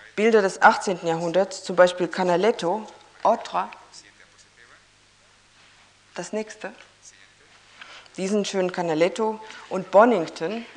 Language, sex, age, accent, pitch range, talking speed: Spanish, female, 50-69, German, 180-215 Hz, 85 wpm